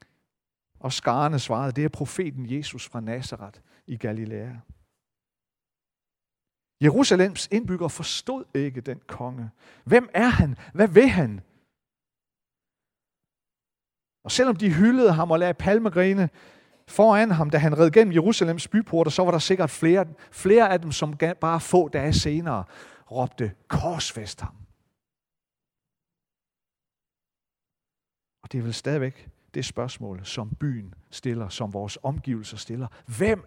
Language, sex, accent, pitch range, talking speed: Danish, male, native, 120-170 Hz, 125 wpm